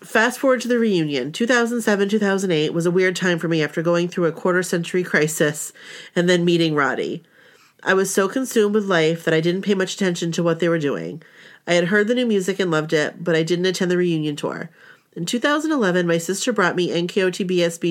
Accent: American